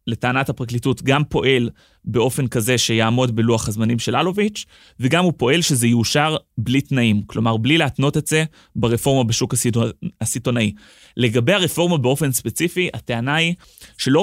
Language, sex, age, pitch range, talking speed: Hebrew, male, 20-39, 120-155 Hz, 145 wpm